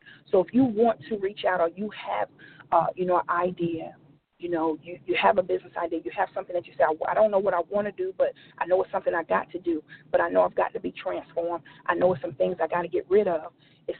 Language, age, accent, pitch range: English, 40-59, American, 170-215 Hz